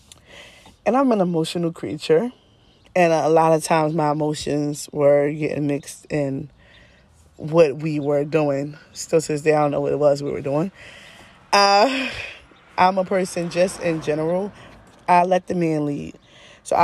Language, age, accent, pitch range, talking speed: English, 20-39, American, 150-175 Hz, 165 wpm